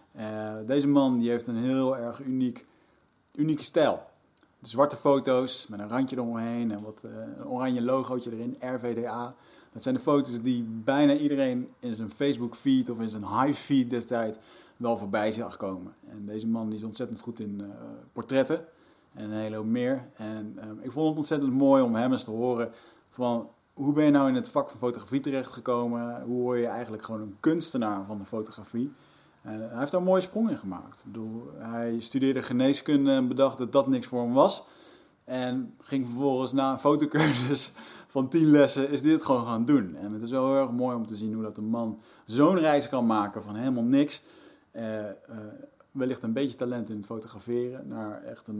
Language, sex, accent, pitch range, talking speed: Dutch, male, Dutch, 110-140 Hz, 200 wpm